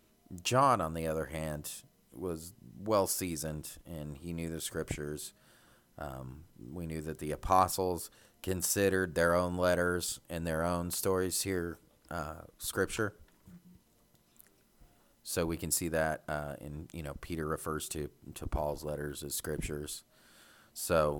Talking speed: 135 wpm